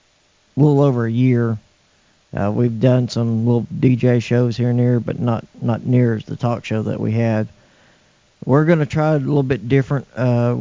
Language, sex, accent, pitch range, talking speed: English, male, American, 115-125 Hz, 190 wpm